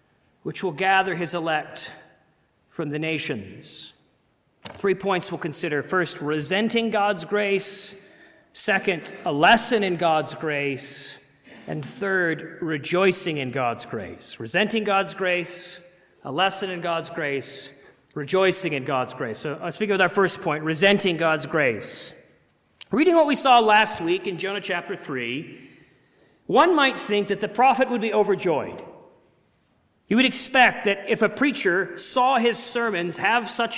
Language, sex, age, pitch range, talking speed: English, male, 40-59, 175-235 Hz, 145 wpm